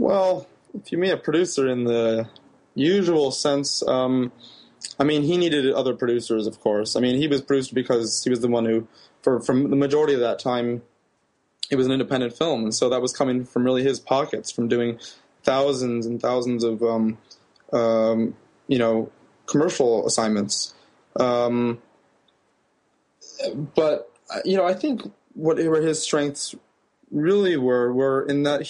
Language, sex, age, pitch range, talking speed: English, male, 20-39, 120-140 Hz, 165 wpm